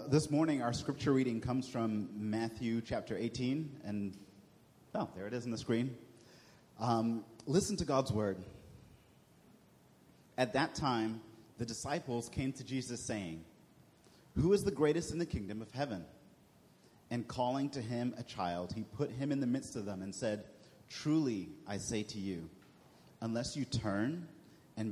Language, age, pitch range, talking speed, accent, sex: English, 30-49, 100-130 Hz, 160 wpm, American, male